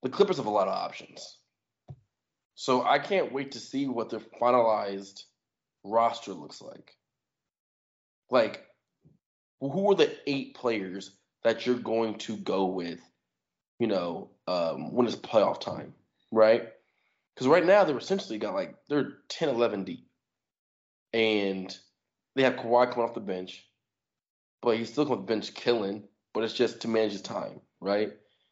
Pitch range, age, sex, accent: 100-130 Hz, 20-39, male, American